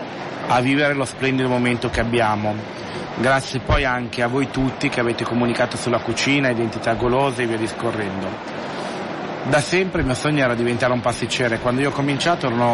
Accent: native